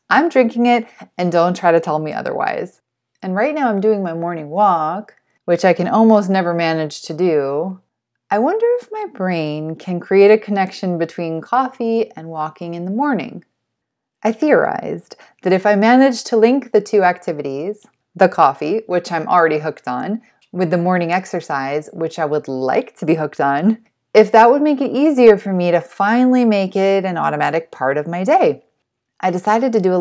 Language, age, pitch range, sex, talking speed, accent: English, 20-39, 175-265 Hz, female, 190 wpm, American